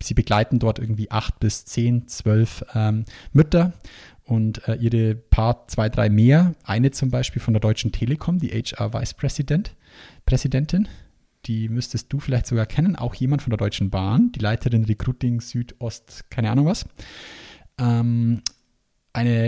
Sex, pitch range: male, 115-140 Hz